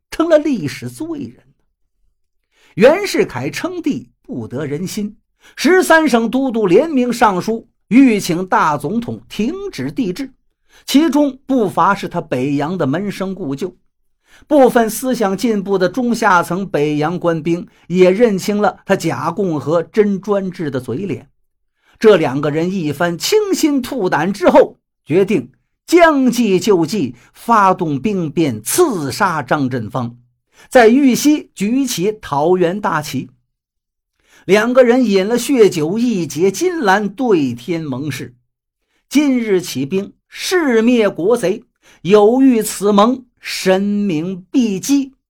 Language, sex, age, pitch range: Chinese, male, 50-69, 160-245 Hz